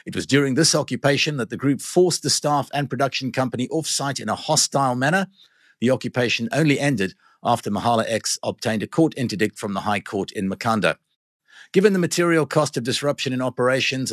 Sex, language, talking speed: male, English, 185 wpm